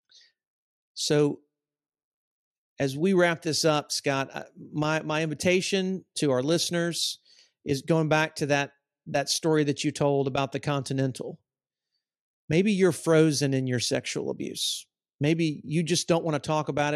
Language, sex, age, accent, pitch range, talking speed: English, male, 40-59, American, 140-165 Hz, 145 wpm